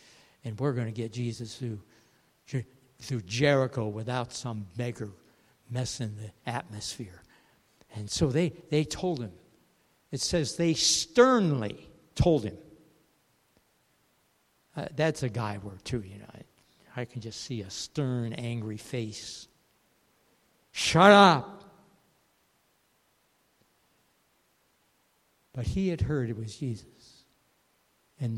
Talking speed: 115 wpm